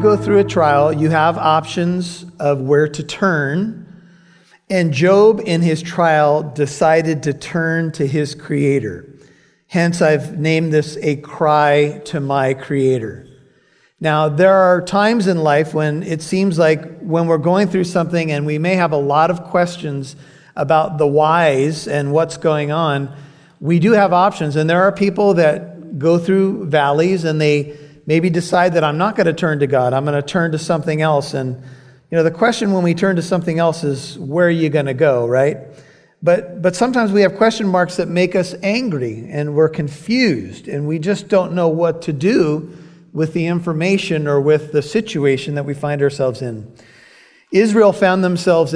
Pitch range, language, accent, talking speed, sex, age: 150-180 Hz, English, American, 180 wpm, male, 40-59